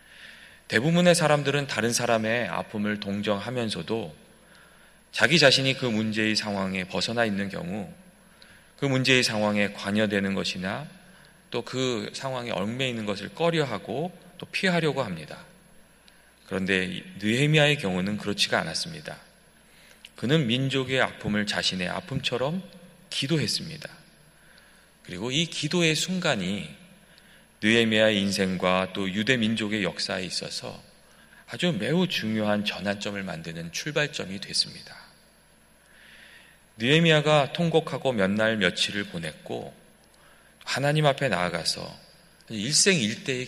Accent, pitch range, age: native, 105-170 Hz, 30-49